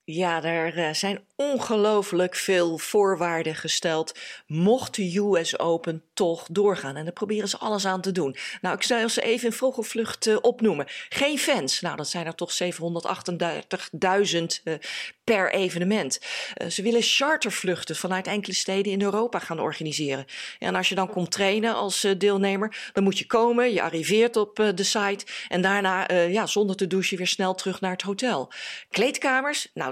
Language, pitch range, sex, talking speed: Dutch, 170-210 Hz, female, 175 wpm